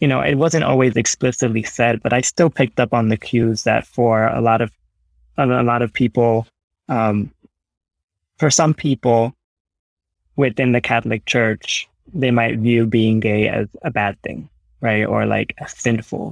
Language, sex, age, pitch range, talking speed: English, male, 20-39, 105-125 Hz, 170 wpm